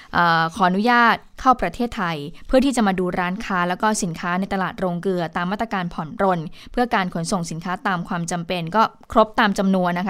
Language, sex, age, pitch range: Thai, female, 20-39, 180-225 Hz